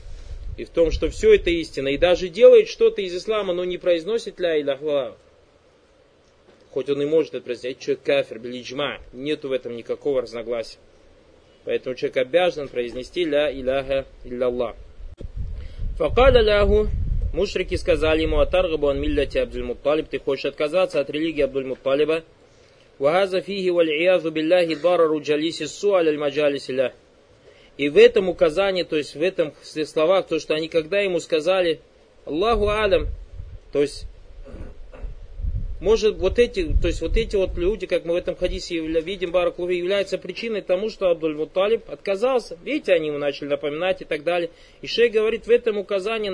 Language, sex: Russian, male